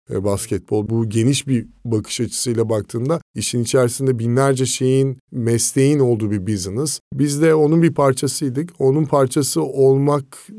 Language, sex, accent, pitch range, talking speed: Turkish, male, native, 115-145 Hz, 130 wpm